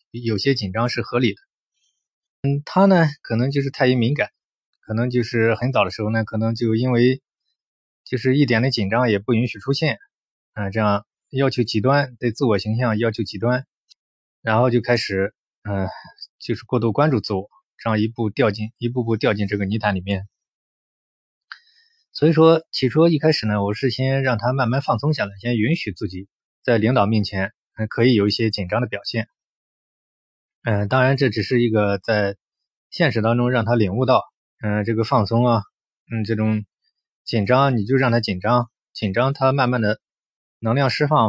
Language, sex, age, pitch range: Chinese, male, 20-39, 105-130 Hz